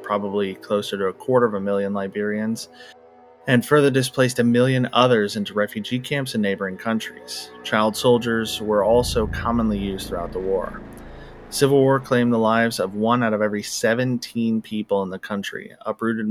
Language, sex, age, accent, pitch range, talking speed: English, male, 30-49, American, 105-125 Hz, 170 wpm